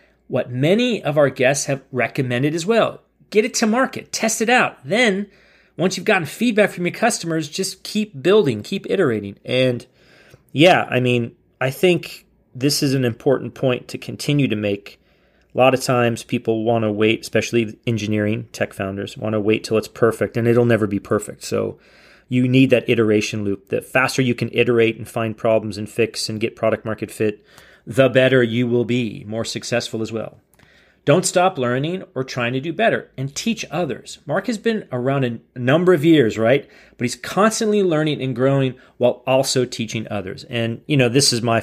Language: English